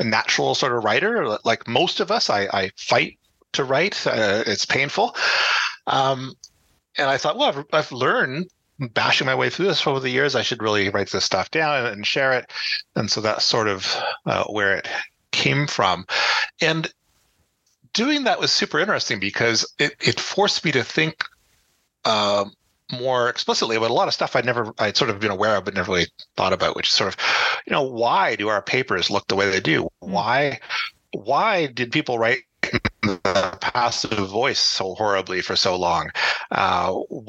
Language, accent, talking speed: English, American, 190 wpm